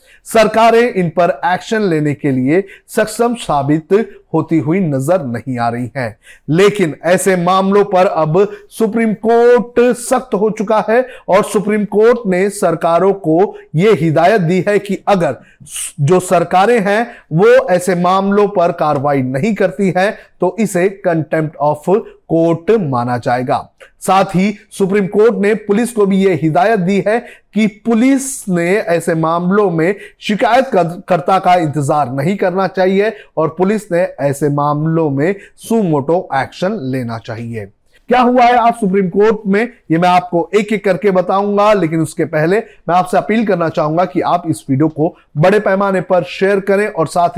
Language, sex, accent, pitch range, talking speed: Hindi, male, native, 160-205 Hz, 160 wpm